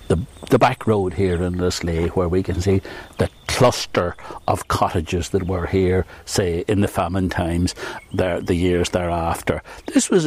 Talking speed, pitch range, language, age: 165 wpm, 95-115 Hz, English, 60-79